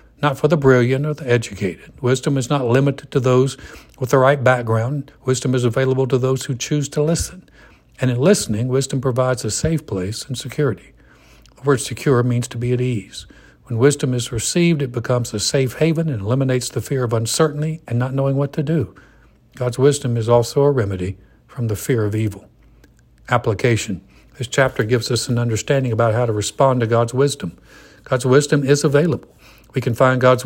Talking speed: 195 wpm